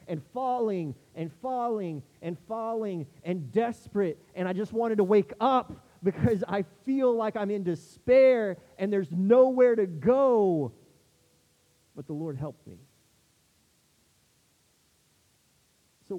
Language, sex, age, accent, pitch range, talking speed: English, male, 30-49, American, 135-195 Hz, 120 wpm